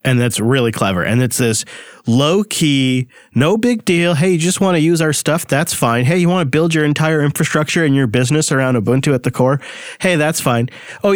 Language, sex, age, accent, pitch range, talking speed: English, male, 40-59, American, 125-165 Hz, 220 wpm